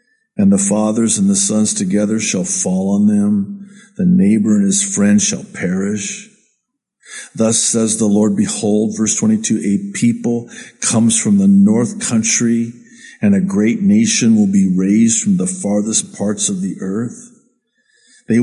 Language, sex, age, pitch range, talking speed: English, male, 50-69, 130-220 Hz, 155 wpm